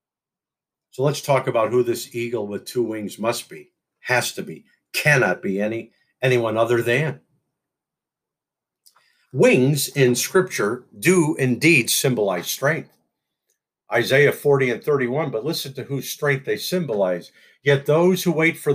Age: 50-69